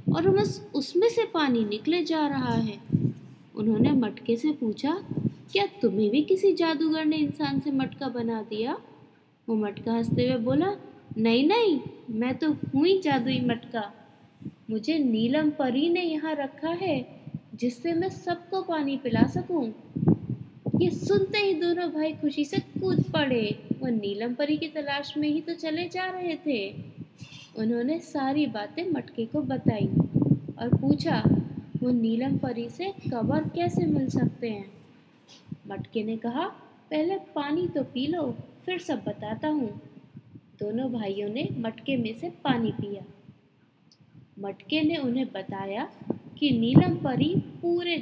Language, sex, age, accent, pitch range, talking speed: Hindi, female, 20-39, native, 225-315 Hz, 140 wpm